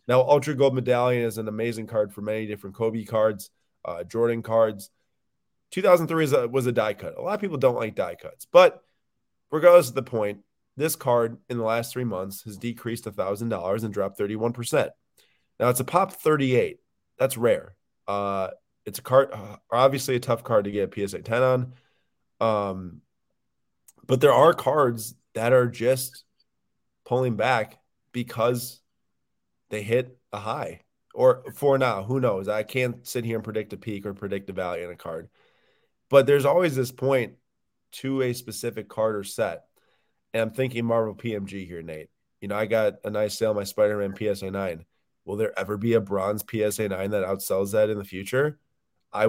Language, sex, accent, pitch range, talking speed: English, male, American, 105-130 Hz, 185 wpm